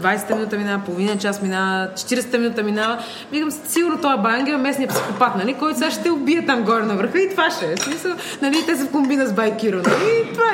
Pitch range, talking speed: 185-285 Hz, 240 wpm